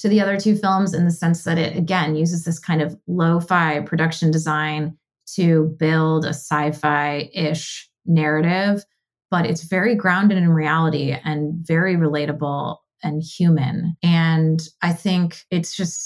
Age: 20-39